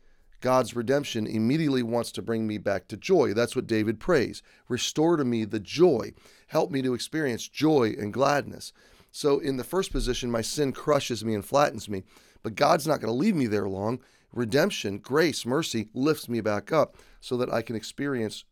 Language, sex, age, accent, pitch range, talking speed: English, male, 30-49, American, 105-140 Hz, 190 wpm